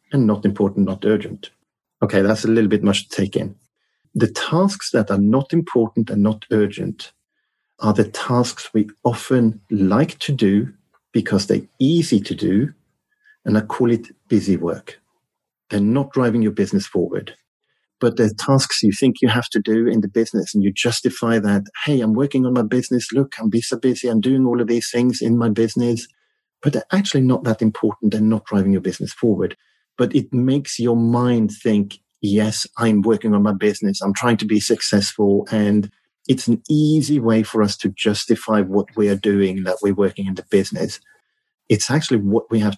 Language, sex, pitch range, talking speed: English, male, 105-125 Hz, 190 wpm